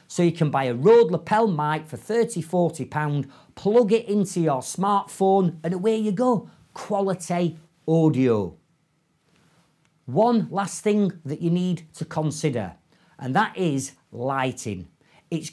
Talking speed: 135 wpm